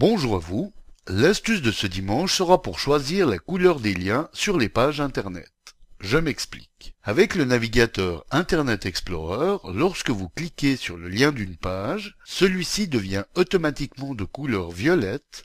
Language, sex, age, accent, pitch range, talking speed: French, male, 60-79, French, 95-150 Hz, 150 wpm